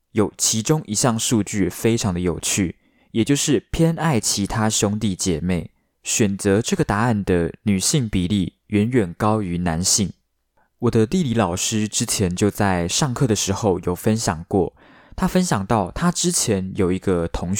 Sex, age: male, 20-39